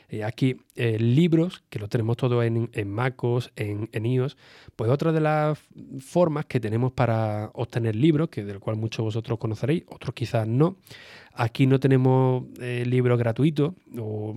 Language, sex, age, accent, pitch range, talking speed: Spanish, male, 30-49, Spanish, 115-135 Hz, 165 wpm